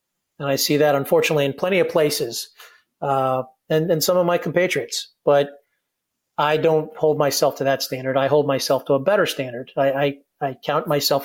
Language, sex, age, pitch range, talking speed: English, male, 40-59, 135-155 Hz, 185 wpm